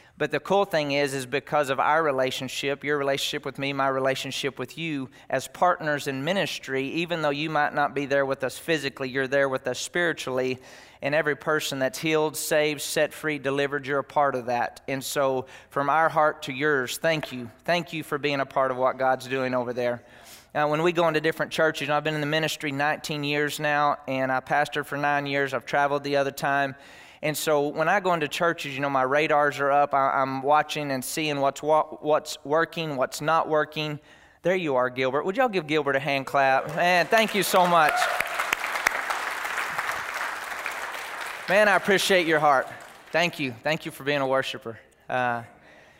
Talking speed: 200 wpm